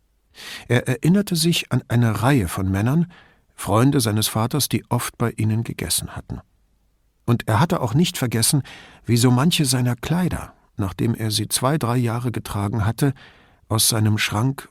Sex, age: male, 50-69